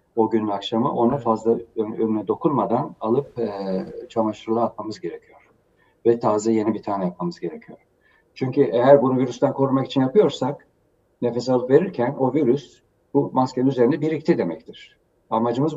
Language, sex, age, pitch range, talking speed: Turkish, male, 50-69, 100-130 Hz, 145 wpm